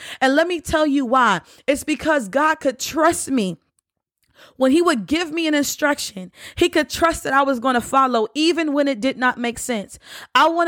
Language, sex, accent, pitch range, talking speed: English, female, American, 250-310 Hz, 210 wpm